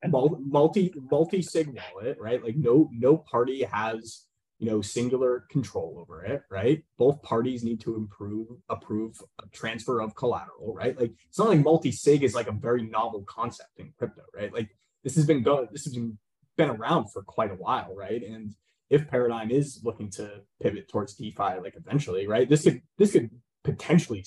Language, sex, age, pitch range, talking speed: English, male, 20-39, 110-150 Hz, 185 wpm